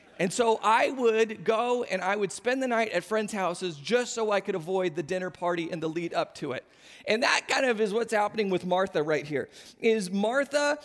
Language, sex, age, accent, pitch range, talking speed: English, male, 40-59, American, 185-255 Hz, 225 wpm